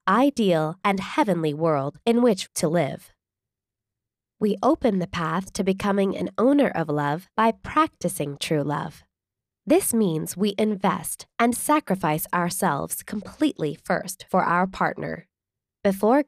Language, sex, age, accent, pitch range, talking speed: English, female, 20-39, American, 155-240 Hz, 130 wpm